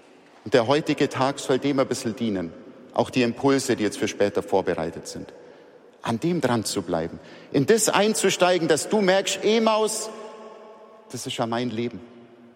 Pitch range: 115-180 Hz